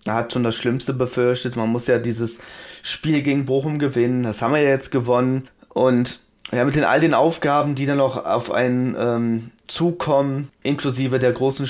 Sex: male